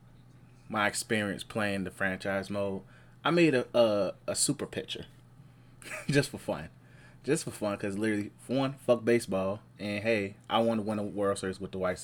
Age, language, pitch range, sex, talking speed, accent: 20-39, English, 105-150 Hz, male, 185 wpm, American